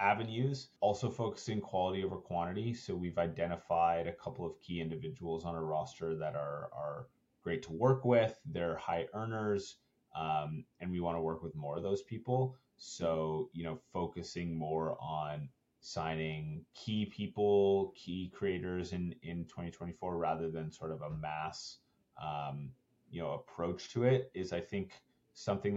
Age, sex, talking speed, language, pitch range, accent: 30-49, male, 160 wpm, English, 80-100 Hz, American